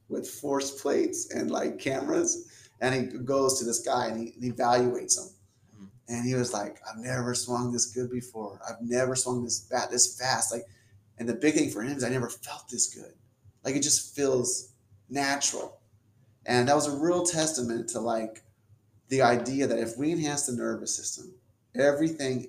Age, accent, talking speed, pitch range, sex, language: 30-49, American, 185 wpm, 115-130 Hz, male, English